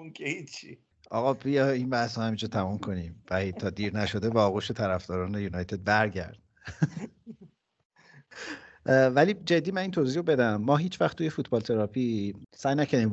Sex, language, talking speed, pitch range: male, Persian, 150 wpm, 90-120 Hz